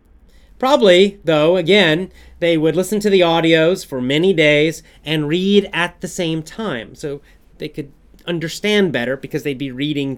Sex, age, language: male, 30-49, English